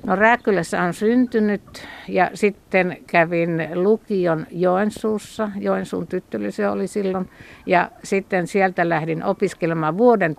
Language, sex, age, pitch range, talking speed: Finnish, female, 60-79, 165-205 Hz, 110 wpm